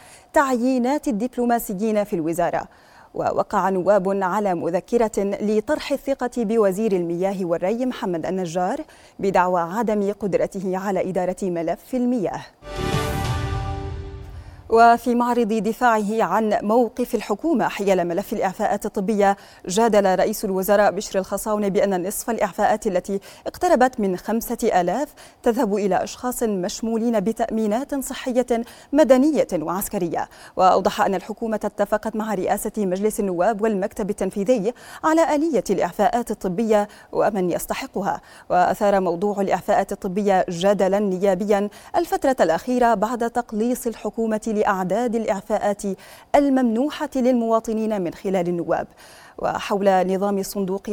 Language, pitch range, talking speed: Arabic, 190-235 Hz, 110 wpm